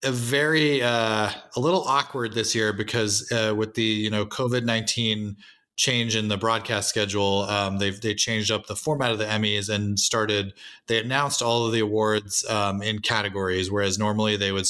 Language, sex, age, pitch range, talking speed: English, male, 30-49, 100-115 Hz, 190 wpm